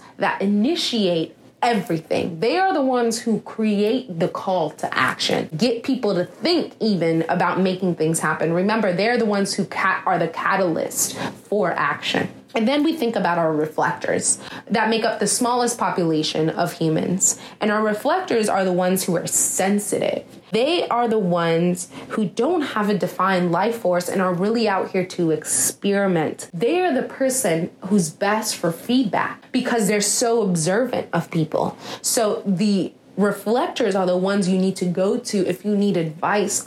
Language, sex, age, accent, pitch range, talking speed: English, female, 30-49, American, 175-230 Hz, 170 wpm